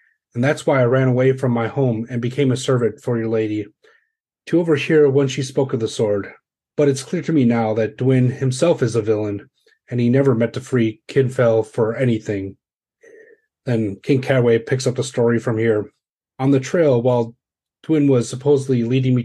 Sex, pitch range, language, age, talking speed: male, 120-140 Hz, English, 30-49, 195 wpm